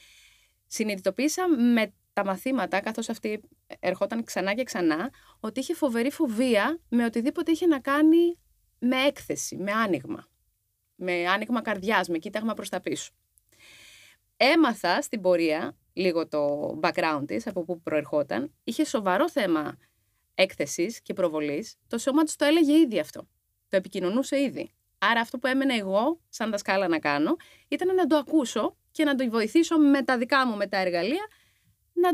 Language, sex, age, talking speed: Greek, female, 20-39, 155 wpm